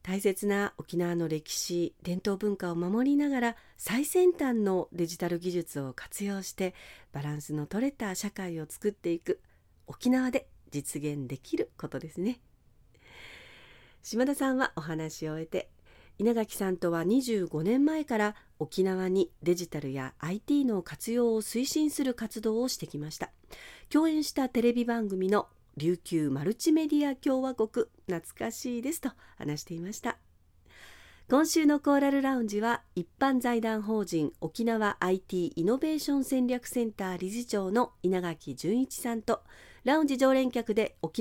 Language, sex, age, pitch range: Japanese, female, 40-59, 175-265 Hz